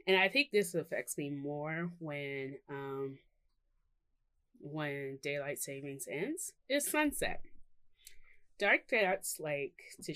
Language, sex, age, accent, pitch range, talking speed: English, female, 20-39, American, 140-190 Hz, 110 wpm